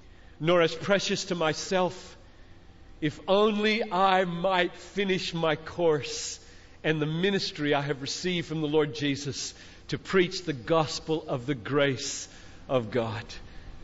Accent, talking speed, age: American, 135 wpm, 50-69